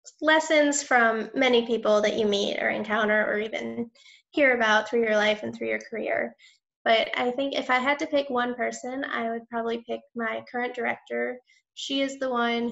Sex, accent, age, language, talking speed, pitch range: female, American, 10-29, English, 195 wpm, 225-275 Hz